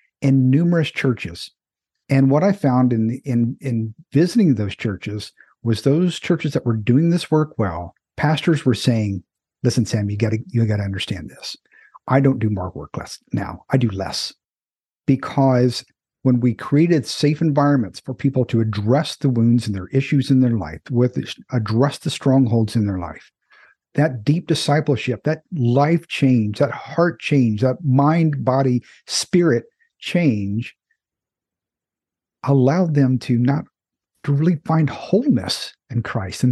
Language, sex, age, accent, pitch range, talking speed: English, male, 50-69, American, 115-145 Hz, 155 wpm